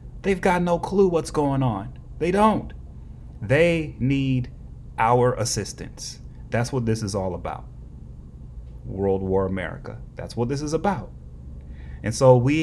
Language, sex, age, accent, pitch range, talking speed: English, male, 30-49, American, 95-150 Hz, 145 wpm